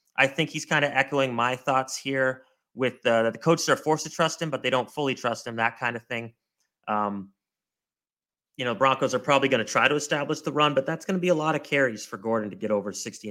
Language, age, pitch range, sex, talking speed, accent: English, 30-49, 105-135 Hz, male, 250 wpm, American